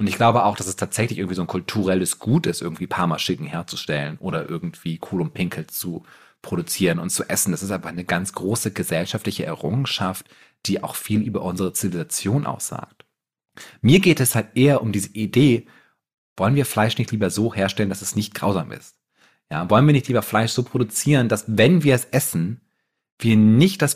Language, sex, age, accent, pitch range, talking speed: German, male, 30-49, German, 105-125 Hz, 190 wpm